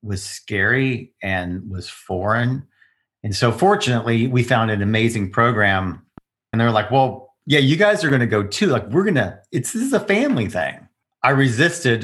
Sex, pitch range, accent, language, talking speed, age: male, 95-120 Hz, American, English, 185 wpm, 50-69